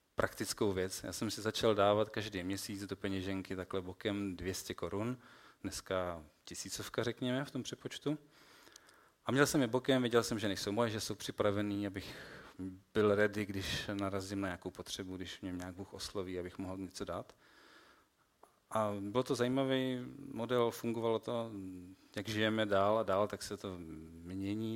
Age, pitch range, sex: 40-59, 95-115 Hz, male